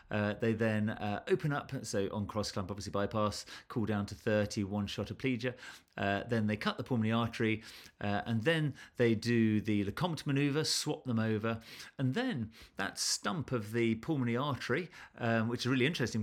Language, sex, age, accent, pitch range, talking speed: English, male, 40-59, British, 105-130 Hz, 190 wpm